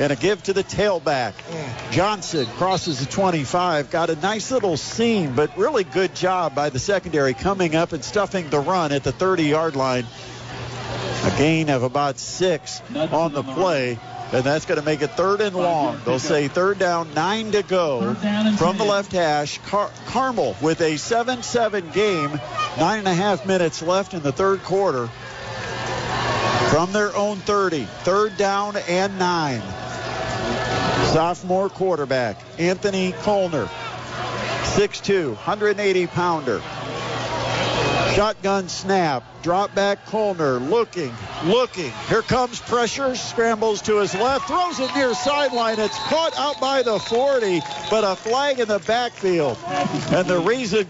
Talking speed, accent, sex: 145 wpm, American, male